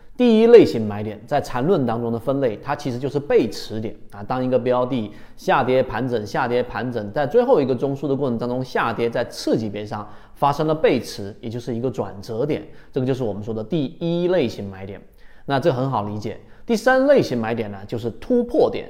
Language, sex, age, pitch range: Chinese, male, 30-49, 115-155 Hz